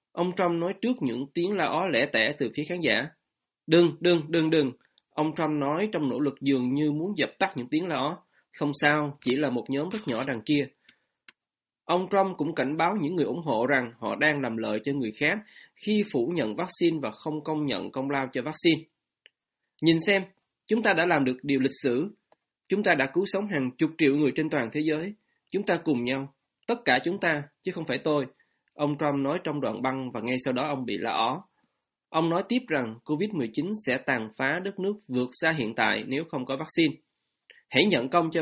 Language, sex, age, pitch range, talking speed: Vietnamese, male, 20-39, 140-180 Hz, 225 wpm